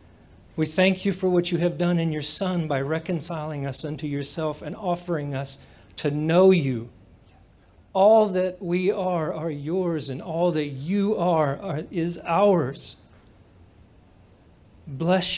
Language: English